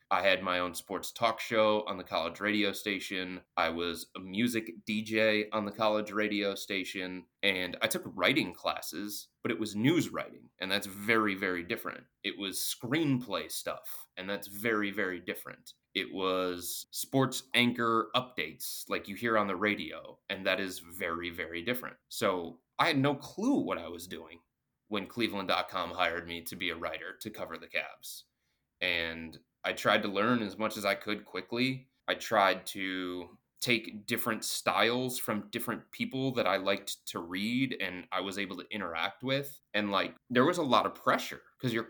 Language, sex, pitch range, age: English, male, 95-125 Hz, 20-39